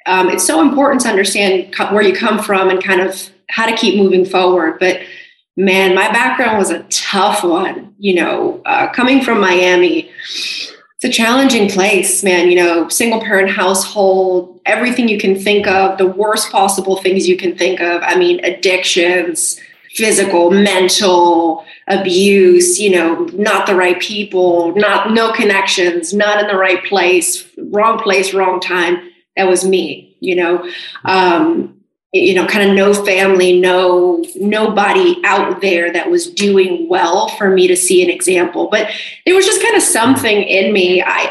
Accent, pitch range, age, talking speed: American, 180-220 Hz, 20-39, 165 wpm